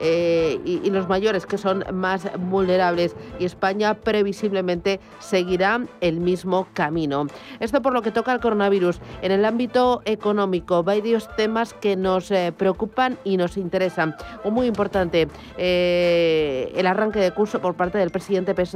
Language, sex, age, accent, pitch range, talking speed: Spanish, female, 40-59, Spanish, 180-215 Hz, 150 wpm